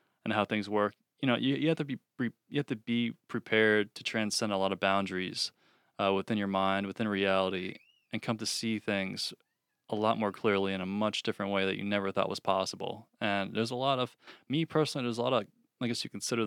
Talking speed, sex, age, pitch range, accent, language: 235 wpm, male, 20-39, 100-115 Hz, American, English